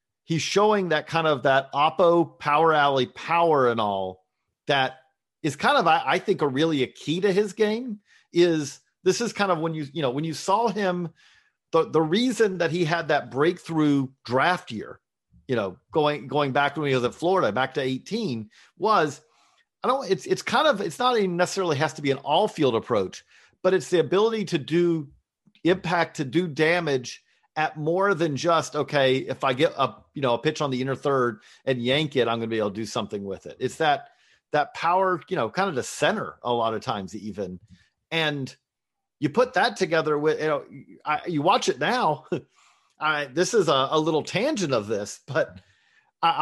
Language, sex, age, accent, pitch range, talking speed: English, male, 40-59, American, 135-185 Hz, 210 wpm